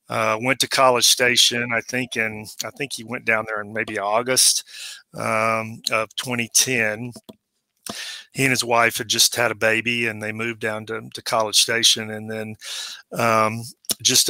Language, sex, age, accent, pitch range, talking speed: English, male, 40-59, American, 110-120 Hz, 170 wpm